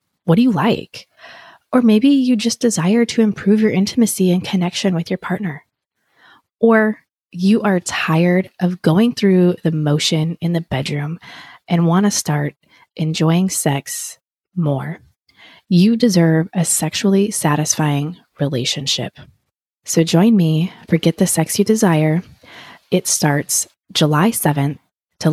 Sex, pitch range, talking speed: female, 160-205 Hz, 135 wpm